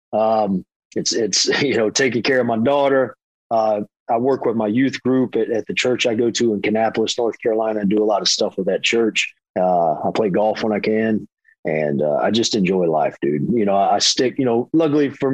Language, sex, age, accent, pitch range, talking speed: English, male, 40-59, American, 110-125 Hz, 230 wpm